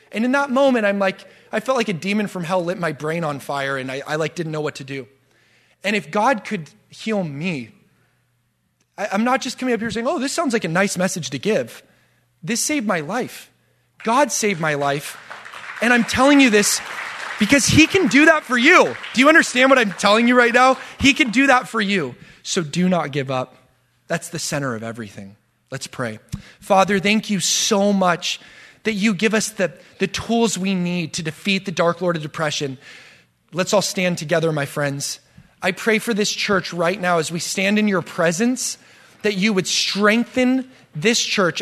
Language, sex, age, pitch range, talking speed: English, male, 30-49, 155-215 Hz, 205 wpm